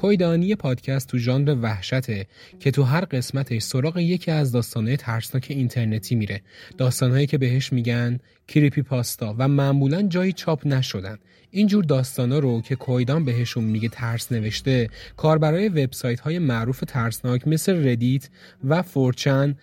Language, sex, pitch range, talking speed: Persian, male, 115-145 Hz, 140 wpm